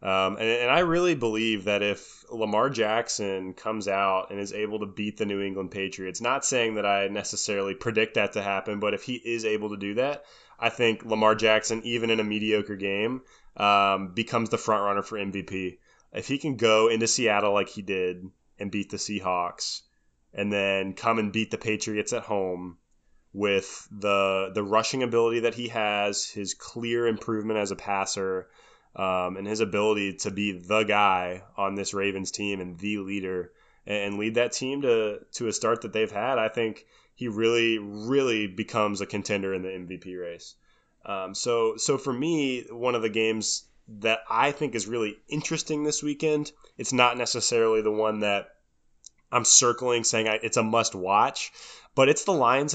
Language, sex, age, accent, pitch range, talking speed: English, male, 20-39, American, 100-115 Hz, 185 wpm